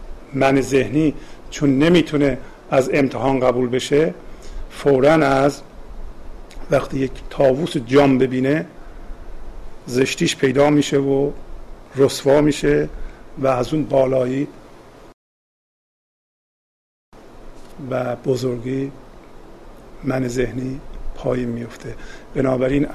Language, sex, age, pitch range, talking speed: Persian, male, 50-69, 125-150 Hz, 85 wpm